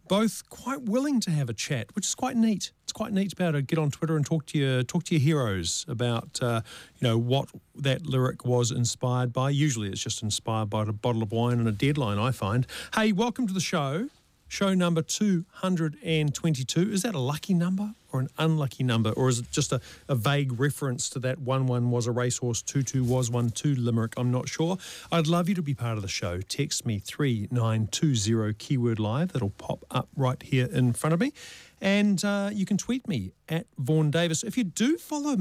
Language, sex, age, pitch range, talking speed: English, male, 40-59, 120-170 Hz, 225 wpm